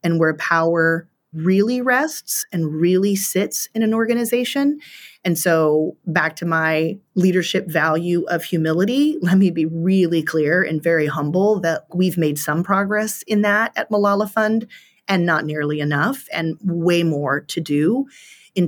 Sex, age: female, 30-49